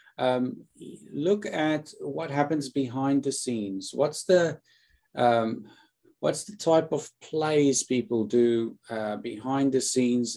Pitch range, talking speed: 115-145 Hz, 125 wpm